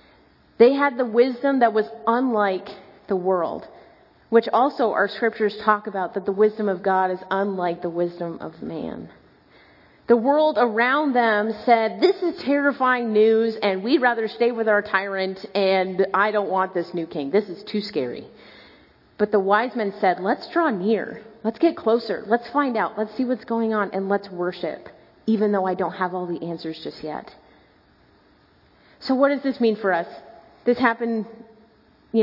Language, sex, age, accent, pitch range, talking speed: English, female, 30-49, American, 195-240 Hz, 175 wpm